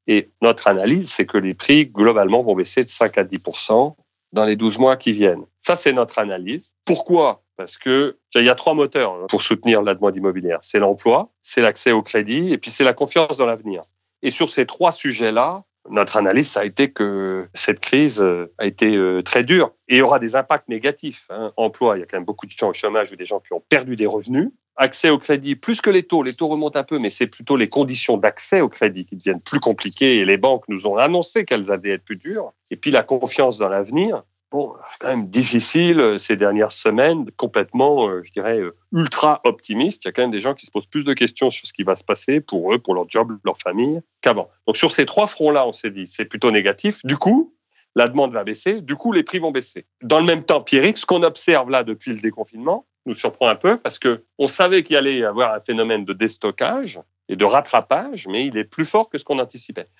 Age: 40-59